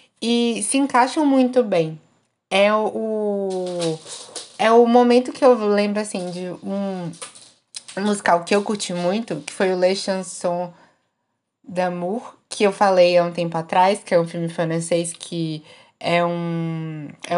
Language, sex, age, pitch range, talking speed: Portuguese, female, 20-39, 180-230 Hz, 140 wpm